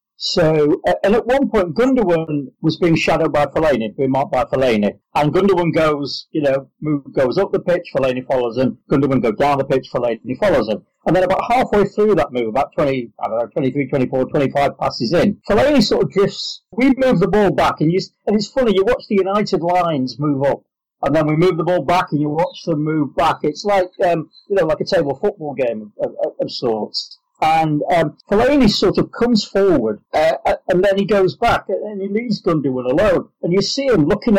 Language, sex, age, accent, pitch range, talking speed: English, male, 40-59, British, 150-200 Hz, 220 wpm